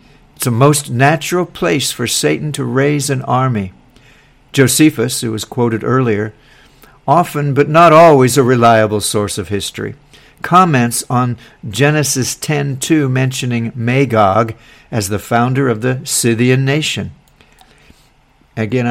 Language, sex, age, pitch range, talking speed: English, male, 60-79, 115-140 Hz, 125 wpm